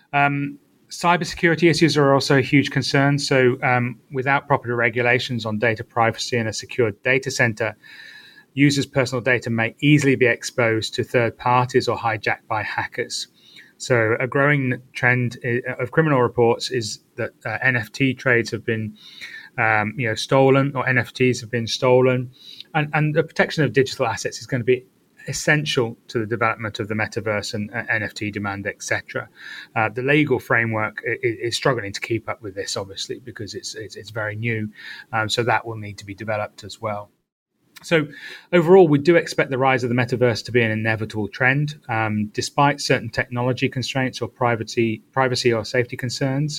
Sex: male